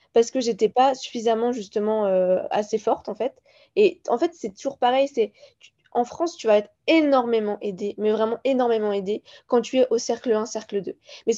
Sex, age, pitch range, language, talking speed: female, 20-39, 220-275 Hz, French, 210 wpm